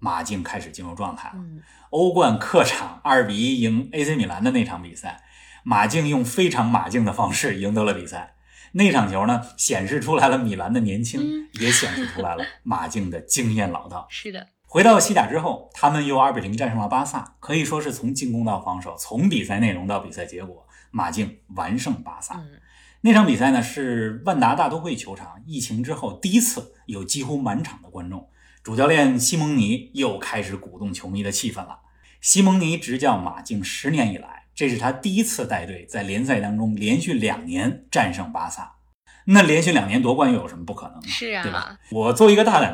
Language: Chinese